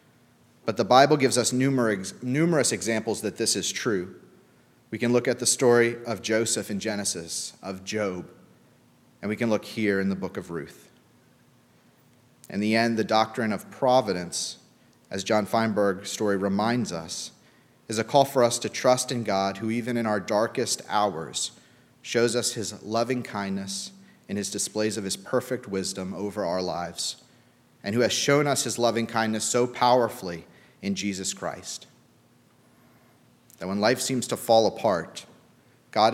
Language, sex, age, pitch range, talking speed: English, male, 30-49, 100-125 Hz, 160 wpm